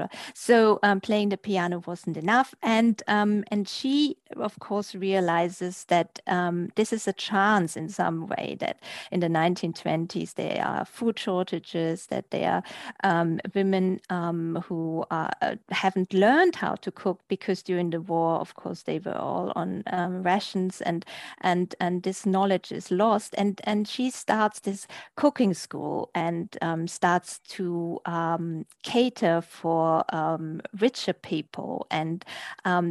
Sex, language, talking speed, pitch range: female, English, 155 wpm, 175-210 Hz